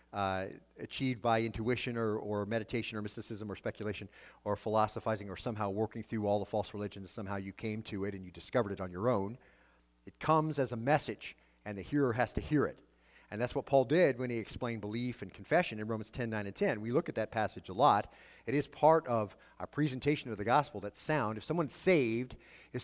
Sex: male